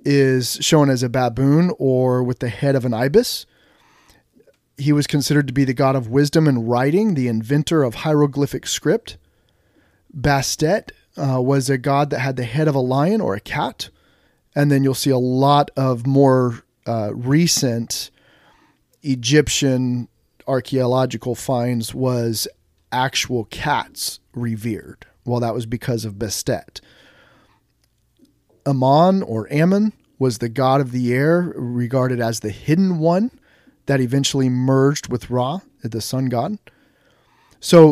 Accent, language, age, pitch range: American, English, 30-49, 125-145 Hz